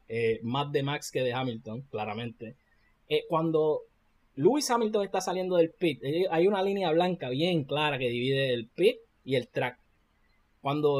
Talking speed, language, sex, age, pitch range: 165 wpm, Spanish, male, 10-29, 145-190 Hz